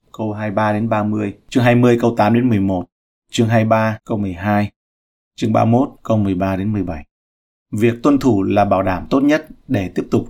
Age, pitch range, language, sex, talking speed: 30-49, 105-125 Hz, Vietnamese, male, 180 wpm